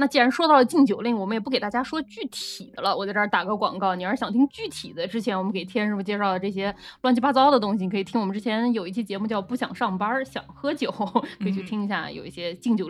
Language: Chinese